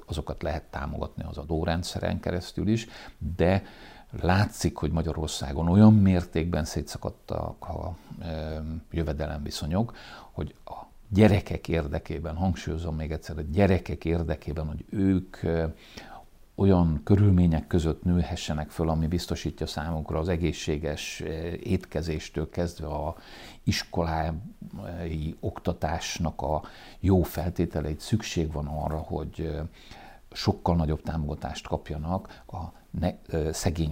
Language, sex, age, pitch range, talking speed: Hungarian, male, 60-79, 75-90 Hz, 100 wpm